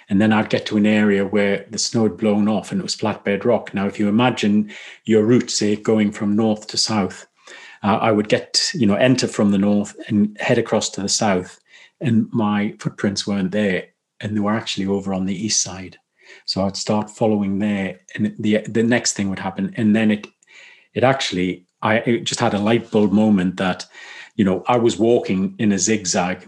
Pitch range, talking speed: 100-110 Hz, 215 wpm